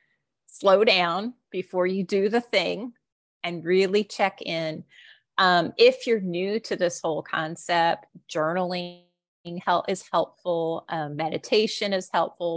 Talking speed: 125 wpm